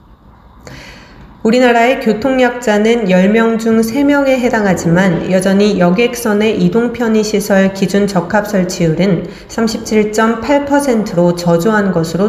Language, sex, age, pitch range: Korean, female, 40-59, 185-230 Hz